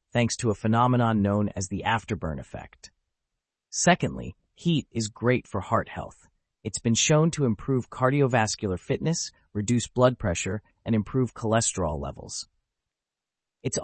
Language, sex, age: English, male, 30-49